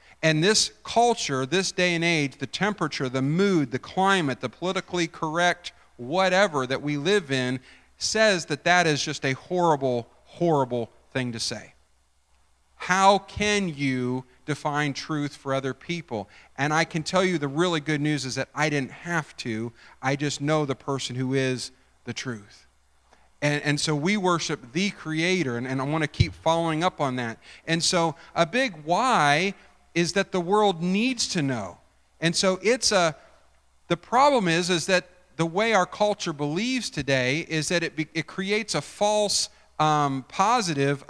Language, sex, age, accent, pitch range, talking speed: English, male, 40-59, American, 130-180 Hz, 170 wpm